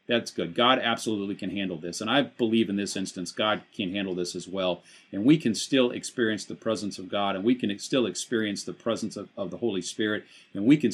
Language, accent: English, American